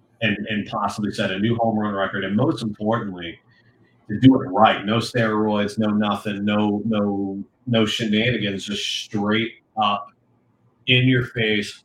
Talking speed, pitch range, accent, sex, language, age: 150 wpm, 100-120 Hz, American, male, English, 30-49